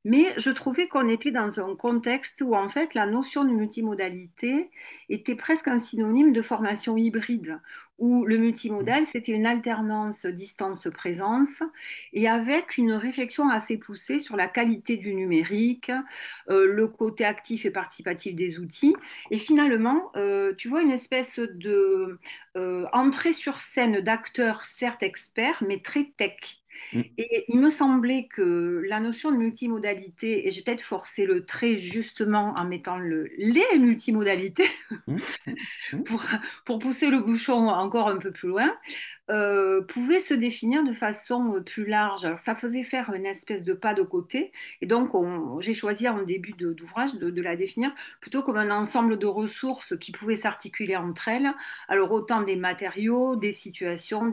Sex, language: female, French